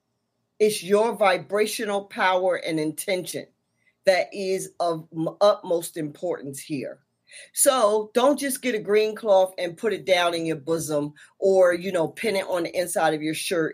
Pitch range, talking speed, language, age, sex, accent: 165-215 Hz, 160 wpm, English, 40-59, female, American